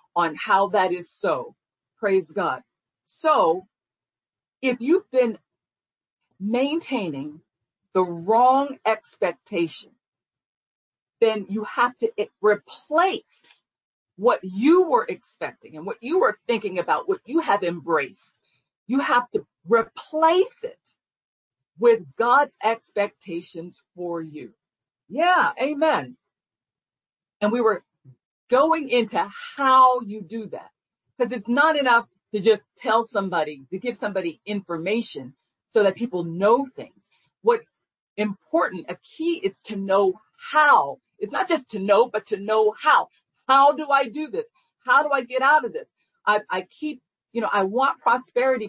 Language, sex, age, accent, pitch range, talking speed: English, female, 50-69, American, 195-285 Hz, 135 wpm